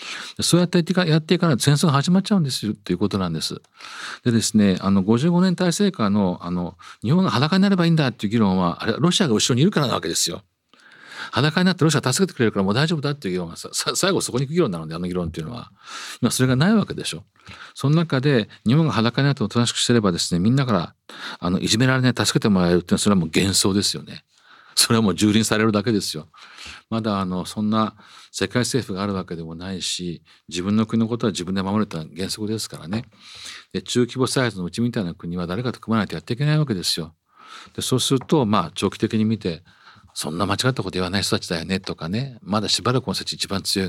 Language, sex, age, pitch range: Japanese, male, 50-69, 95-140 Hz